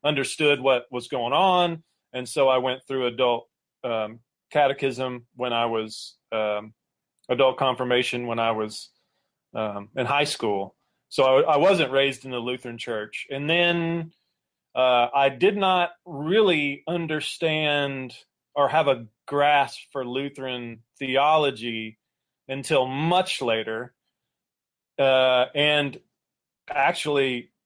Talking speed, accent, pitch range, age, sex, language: 120 wpm, American, 120-145 Hz, 30-49, male, English